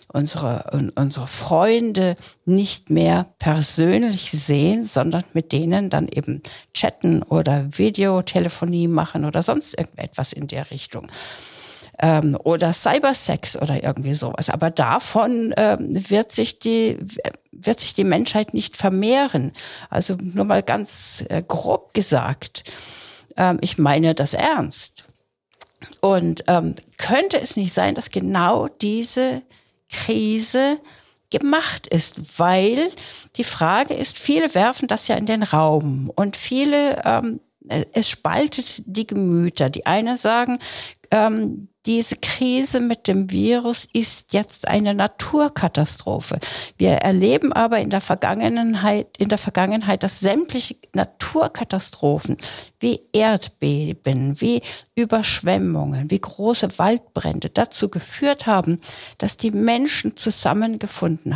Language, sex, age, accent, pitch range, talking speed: German, female, 60-79, German, 160-230 Hz, 120 wpm